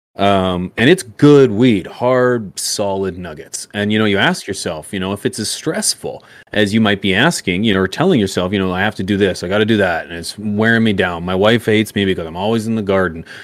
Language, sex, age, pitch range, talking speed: English, male, 30-49, 95-120 Hz, 250 wpm